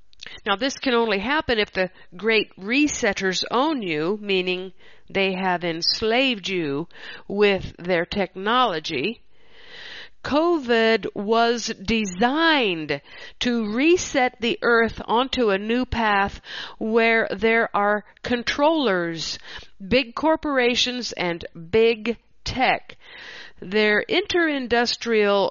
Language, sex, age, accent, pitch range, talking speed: English, female, 50-69, American, 185-240 Hz, 95 wpm